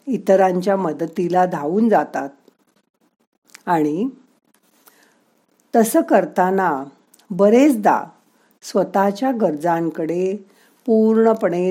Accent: native